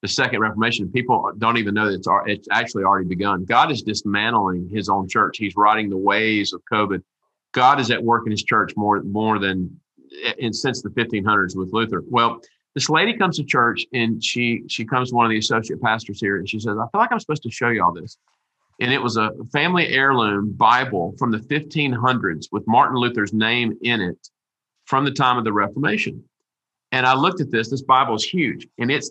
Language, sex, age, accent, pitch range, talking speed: English, male, 40-59, American, 110-130 Hz, 215 wpm